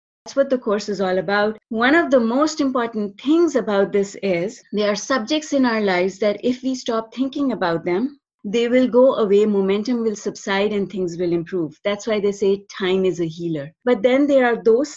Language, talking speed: English, 210 wpm